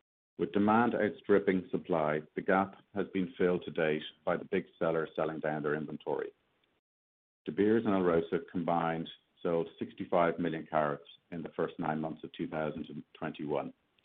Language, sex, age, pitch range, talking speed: English, male, 50-69, 80-95 Hz, 155 wpm